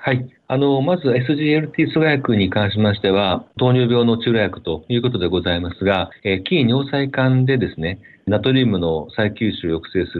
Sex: male